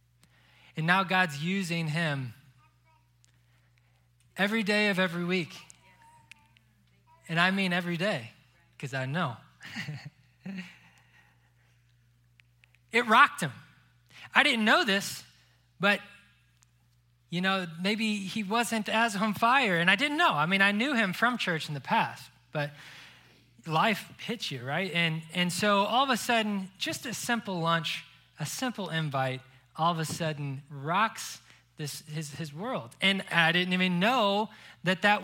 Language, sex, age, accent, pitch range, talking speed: English, male, 20-39, American, 135-210 Hz, 140 wpm